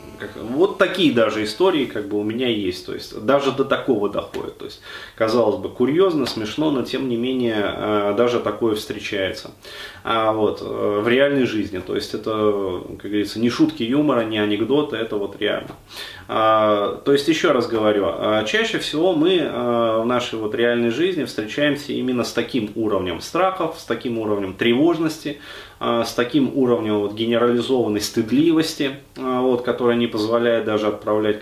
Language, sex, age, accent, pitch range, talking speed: Russian, male, 30-49, native, 110-145 Hz, 155 wpm